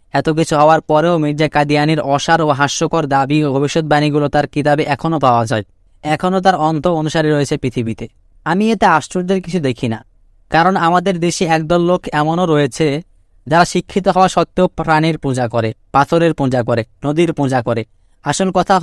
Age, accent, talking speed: 20-39, native, 165 wpm